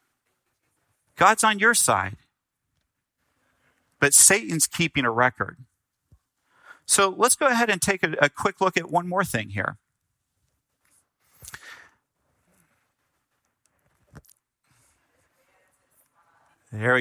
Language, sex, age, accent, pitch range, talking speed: English, male, 40-59, American, 130-180 Hz, 90 wpm